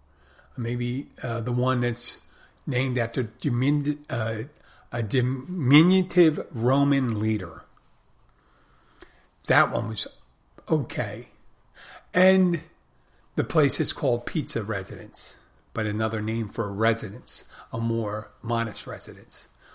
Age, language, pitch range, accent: 50-69, English, 115-150 Hz, American